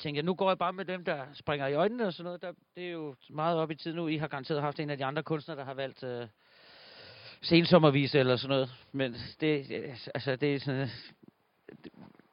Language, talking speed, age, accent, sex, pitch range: Danish, 225 wpm, 40-59, native, male, 130-160 Hz